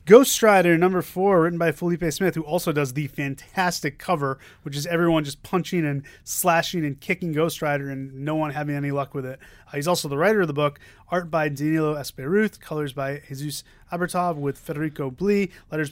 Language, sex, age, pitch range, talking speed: English, male, 30-49, 145-185 Hz, 195 wpm